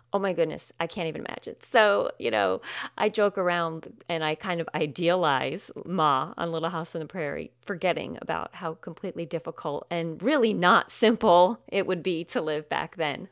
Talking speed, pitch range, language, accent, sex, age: 185 wpm, 160-230 Hz, English, American, female, 40-59